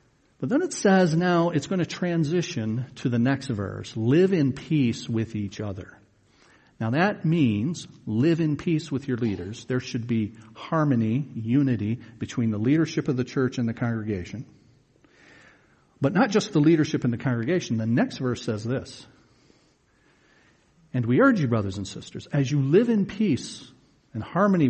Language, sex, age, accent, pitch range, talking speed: English, male, 50-69, American, 115-165 Hz, 170 wpm